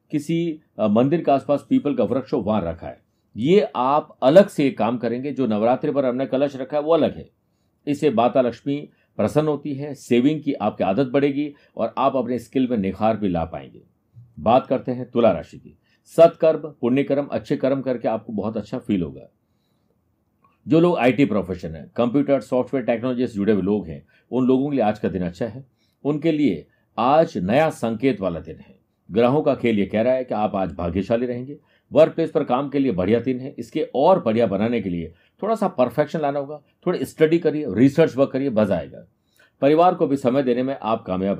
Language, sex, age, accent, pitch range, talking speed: Hindi, male, 50-69, native, 115-150 Hz, 200 wpm